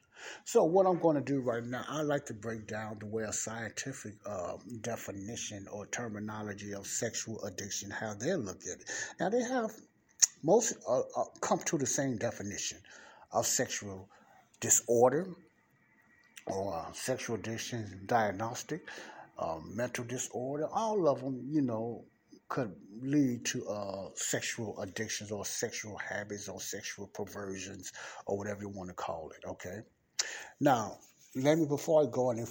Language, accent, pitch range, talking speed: English, American, 100-125 Hz, 155 wpm